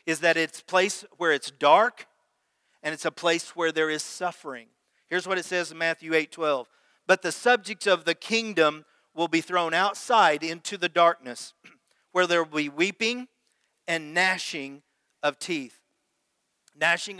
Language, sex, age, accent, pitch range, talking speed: English, male, 50-69, American, 150-175 Hz, 165 wpm